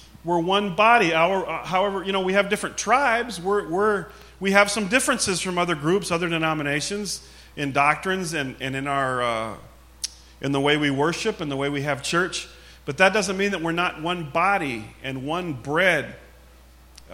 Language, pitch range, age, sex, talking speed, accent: English, 120-175 Hz, 40-59, male, 190 wpm, American